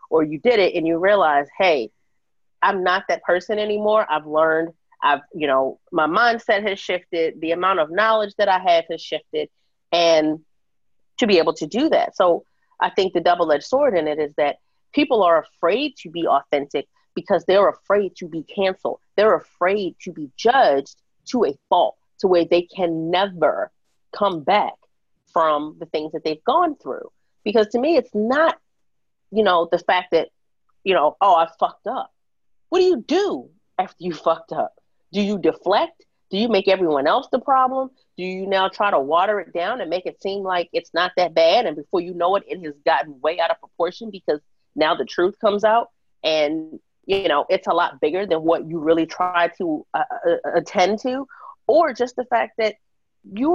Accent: American